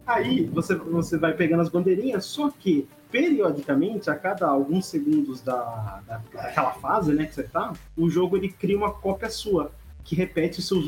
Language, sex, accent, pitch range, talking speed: Portuguese, male, Brazilian, 145-210 Hz, 180 wpm